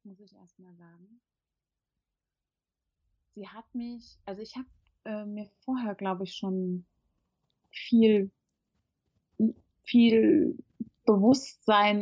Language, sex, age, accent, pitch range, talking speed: German, female, 30-49, German, 185-230 Hz, 95 wpm